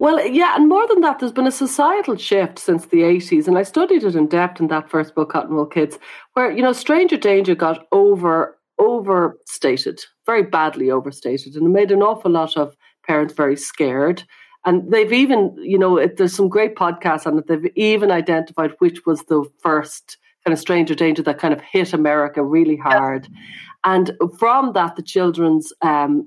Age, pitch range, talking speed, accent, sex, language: 40-59, 150-195 Hz, 185 wpm, Irish, female, English